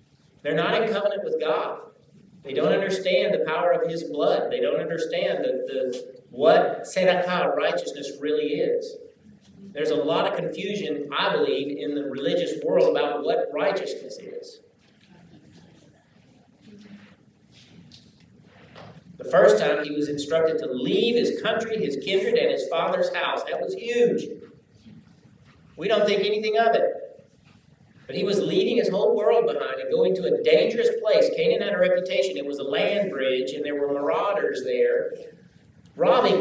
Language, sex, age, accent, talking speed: English, male, 50-69, American, 150 wpm